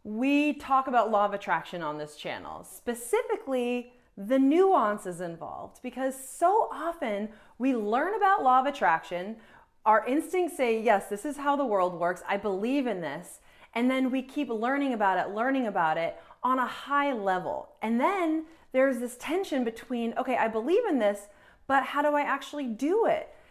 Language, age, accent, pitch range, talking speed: English, 30-49, American, 200-275 Hz, 175 wpm